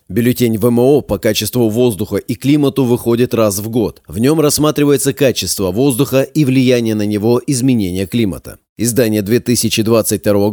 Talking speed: 135 wpm